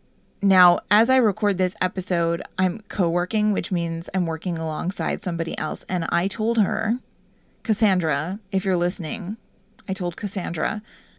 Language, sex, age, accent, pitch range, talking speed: English, female, 30-49, American, 180-215 Hz, 140 wpm